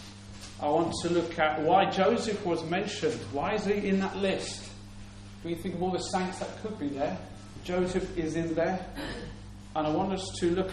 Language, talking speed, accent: English, 200 wpm, British